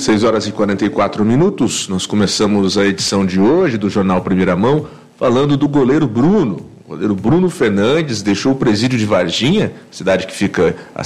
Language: English